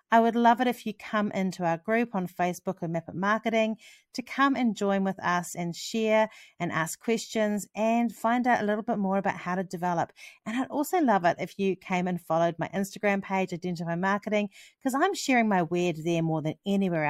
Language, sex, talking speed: English, female, 215 wpm